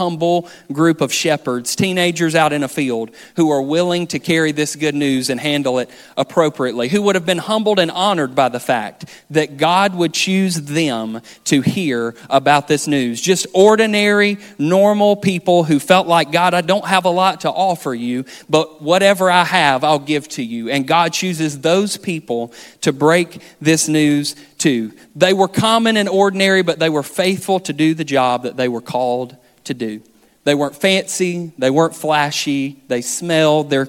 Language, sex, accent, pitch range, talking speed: English, male, American, 135-175 Hz, 185 wpm